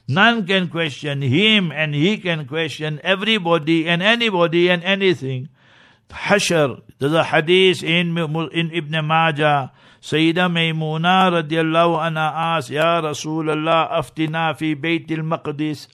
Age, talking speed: 60-79, 120 wpm